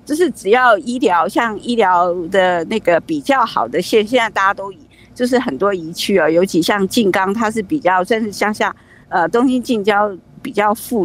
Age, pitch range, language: 50-69, 195-260 Hz, Chinese